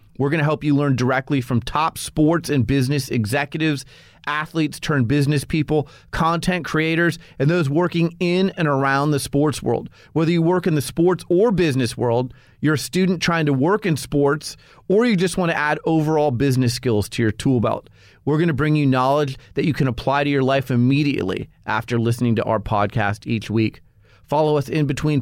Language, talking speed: English, 200 wpm